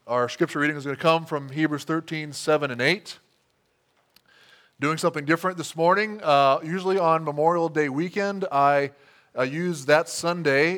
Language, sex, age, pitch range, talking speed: English, male, 20-39, 125-160 Hz, 160 wpm